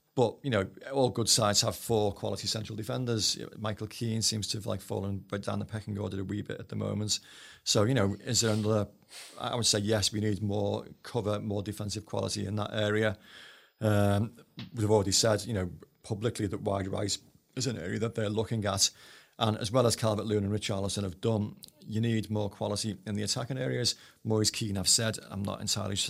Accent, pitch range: British, 100-115 Hz